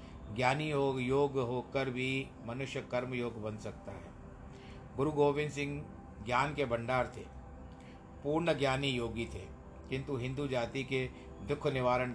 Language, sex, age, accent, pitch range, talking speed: Hindi, male, 50-69, native, 115-145 Hz, 140 wpm